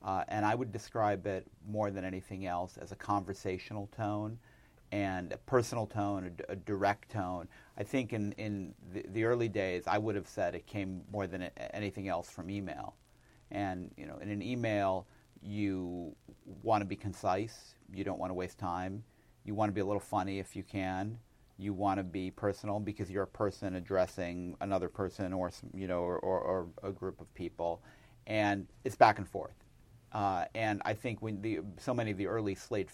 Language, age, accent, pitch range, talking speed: English, 40-59, American, 95-105 Hz, 195 wpm